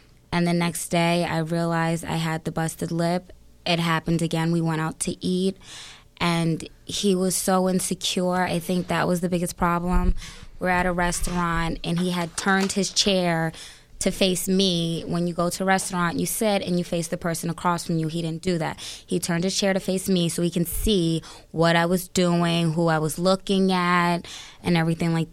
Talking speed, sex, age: 205 wpm, female, 20-39